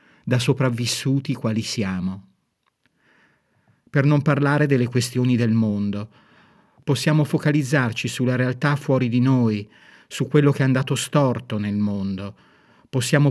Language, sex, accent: Italian, male, native